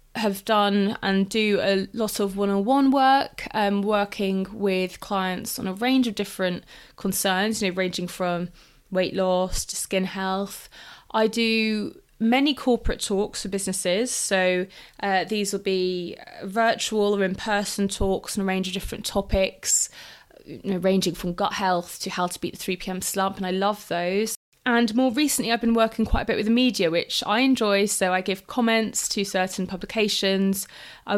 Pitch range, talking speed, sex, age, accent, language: 190-230 Hz, 175 wpm, female, 20-39, British, English